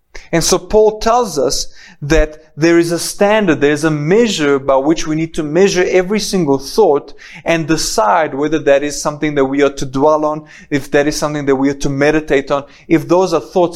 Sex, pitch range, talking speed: male, 145-185 Hz, 215 wpm